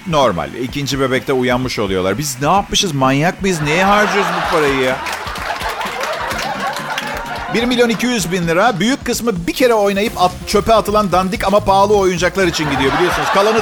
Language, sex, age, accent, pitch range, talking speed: Turkish, male, 50-69, native, 145-205 Hz, 145 wpm